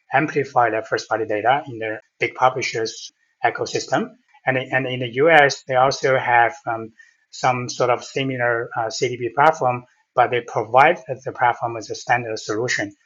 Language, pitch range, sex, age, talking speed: English, 120-145 Hz, male, 30-49, 140 wpm